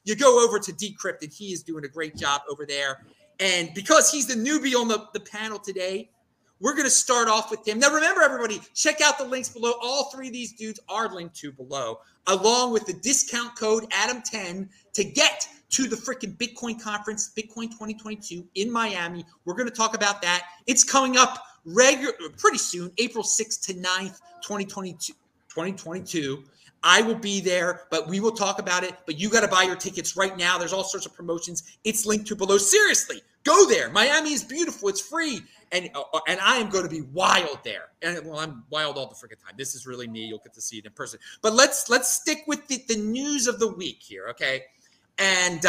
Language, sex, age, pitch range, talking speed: English, male, 30-49, 175-245 Hz, 210 wpm